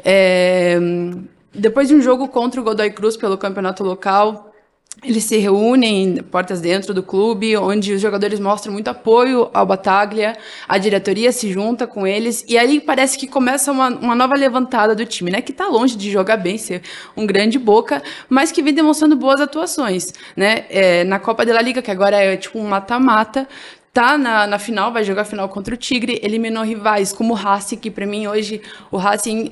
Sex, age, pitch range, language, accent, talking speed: female, 20-39, 200-250 Hz, Portuguese, Brazilian, 195 wpm